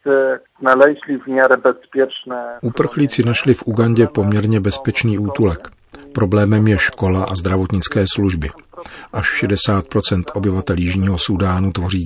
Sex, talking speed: male, 95 wpm